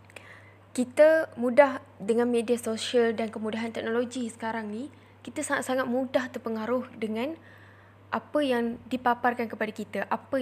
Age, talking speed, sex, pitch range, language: 10-29, 120 wpm, female, 215-255 Hz, Malay